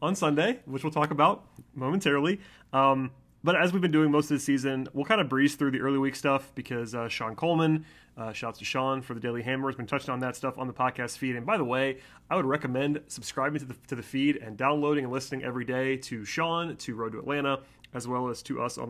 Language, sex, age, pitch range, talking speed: English, male, 30-49, 125-155 Hz, 250 wpm